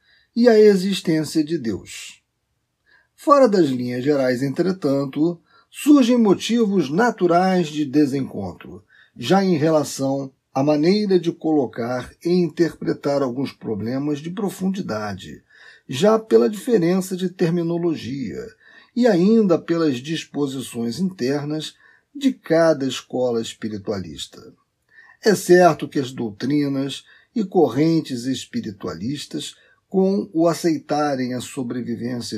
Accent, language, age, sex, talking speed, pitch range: Brazilian, Portuguese, 40-59, male, 100 wpm, 135-185 Hz